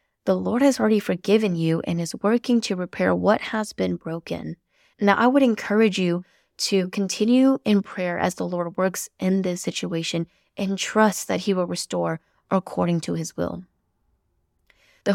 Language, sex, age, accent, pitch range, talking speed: English, female, 10-29, American, 175-215 Hz, 165 wpm